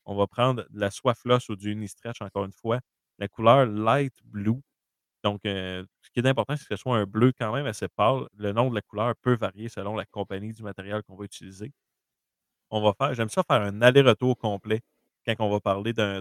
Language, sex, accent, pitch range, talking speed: French, male, Canadian, 100-120 Hz, 225 wpm